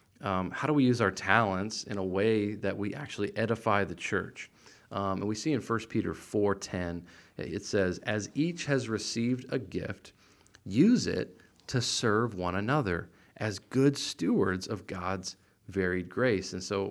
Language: English